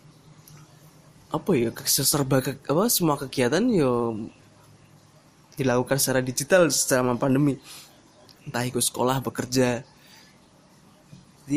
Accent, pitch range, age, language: native, 120-150 Hz, 20-39, Indonesian